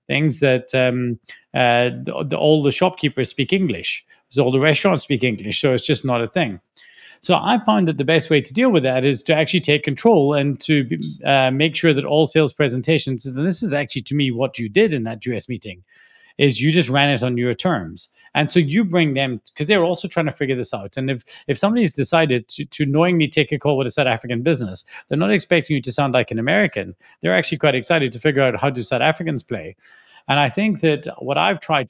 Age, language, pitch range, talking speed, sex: 30-49, English, 125-160 Hz, 235 wpm, male